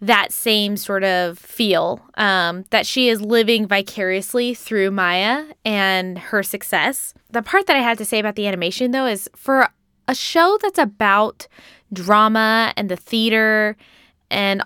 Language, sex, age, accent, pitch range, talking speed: English, female, 10-29, American, 205-255 Hz, 155 wpm